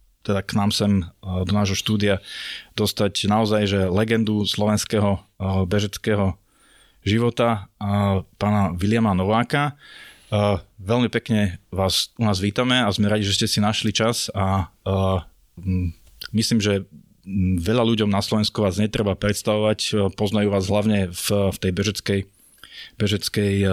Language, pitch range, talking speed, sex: Slovak, 95-110 Hz, 120 wpm, male